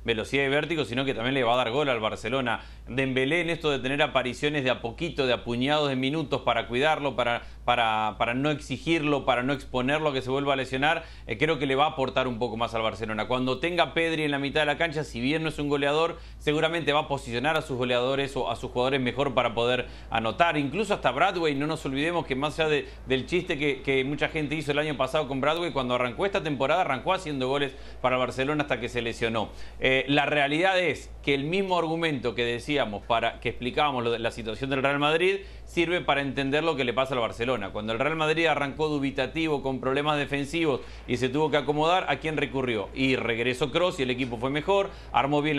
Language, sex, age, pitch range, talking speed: Spanish, male, 30-49, 125-155 Hz, 230 wpm